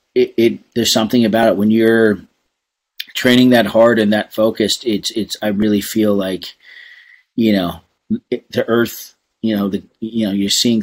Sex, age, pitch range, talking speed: male, 30-49, 100-115 Hz, 170 wpm